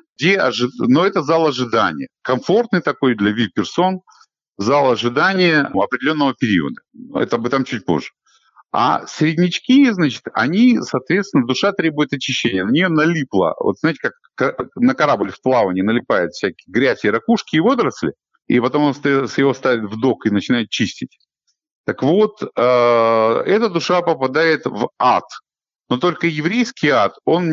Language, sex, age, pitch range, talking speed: Russian, male, 50-69, 130-190 Hz, 145 wpm